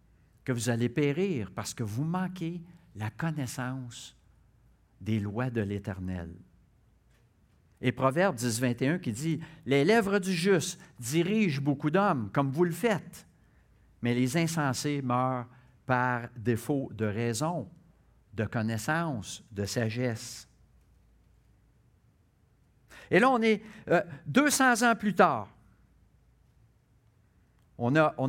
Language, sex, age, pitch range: French, male, 60-79, 110-160 Hz